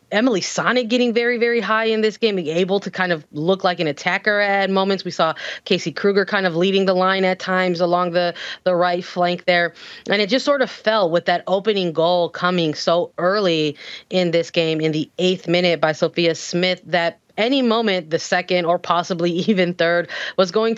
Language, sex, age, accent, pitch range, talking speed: English, female, 20-39, American, 160-190 Hz, 205 wpm